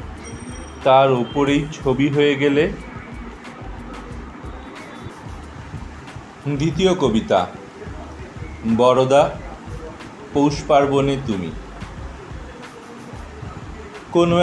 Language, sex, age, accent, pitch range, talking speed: Bengali, male, 40-59, native, 140-185 Hz, 50 wpm